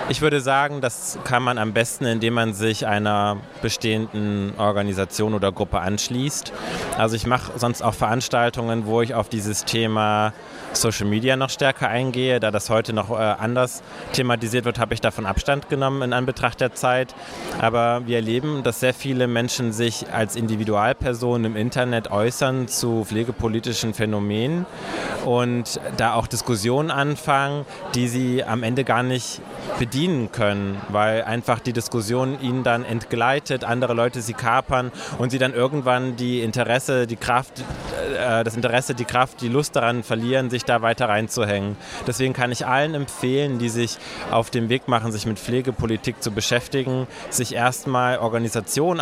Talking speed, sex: 160 wpm, male